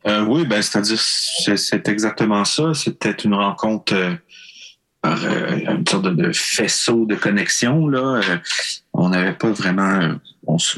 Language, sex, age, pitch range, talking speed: French, male, 30-49, 100-165 Hz, 150 wpm